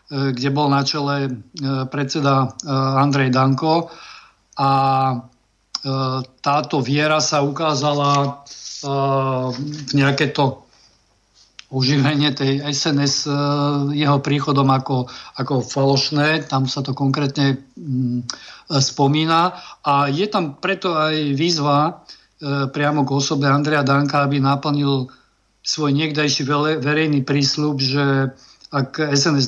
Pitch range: 135-150 Hz